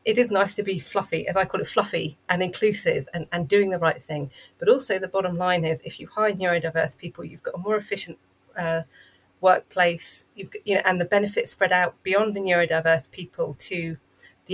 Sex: female